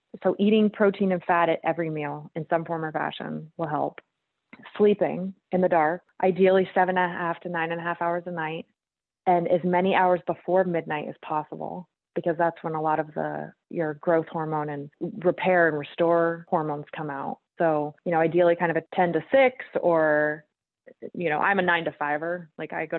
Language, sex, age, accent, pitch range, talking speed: English, female, 20-39, American, 155-185 Hz, 205 wpm